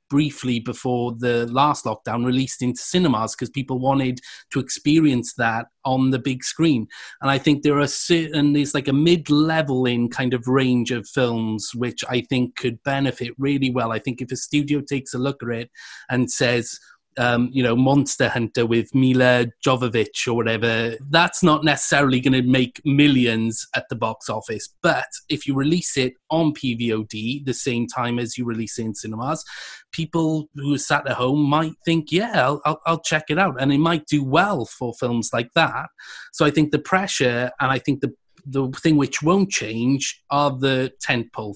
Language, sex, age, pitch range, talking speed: English, male, 30-49, 120-145 Hz, 190 wpm